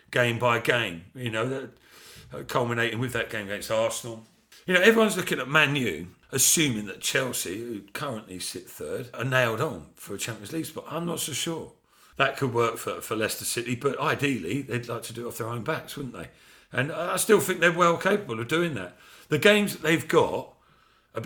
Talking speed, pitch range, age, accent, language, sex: 205 wpm, 115-150 Hz, 50-69, British, English, male